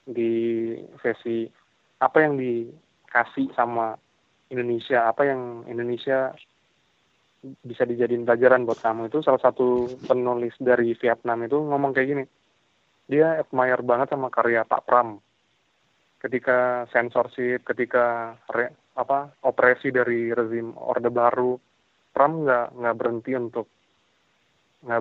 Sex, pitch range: male, 120-130 Hz